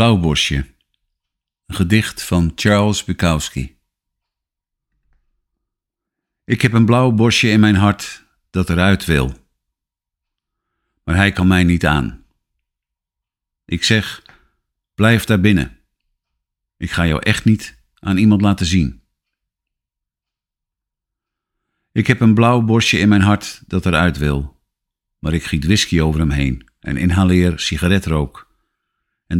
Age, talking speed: 50-69, 120 wpm